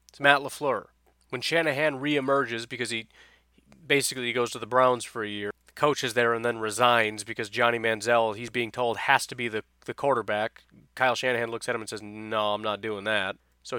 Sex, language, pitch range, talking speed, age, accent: male, English, 115-140 Hz, 210 wpm, 30-49, American